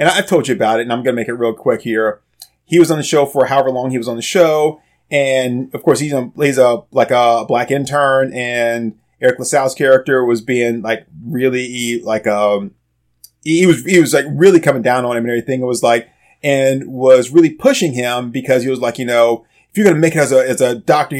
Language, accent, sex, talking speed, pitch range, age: English, American, male, 245 wpm, 125-155 Hz, 30-49